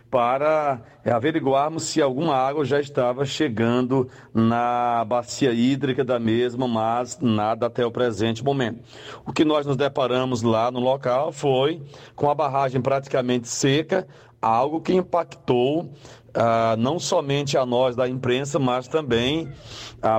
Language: Portuguese